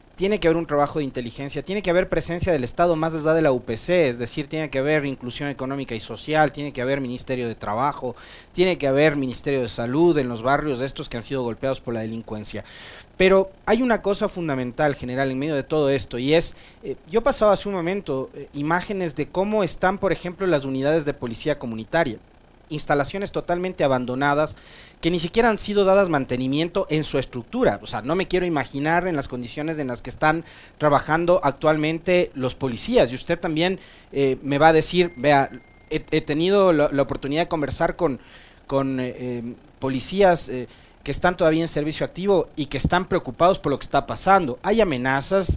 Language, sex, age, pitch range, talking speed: Spanish, male, 40-59, 130-175 Hz, 200 wpm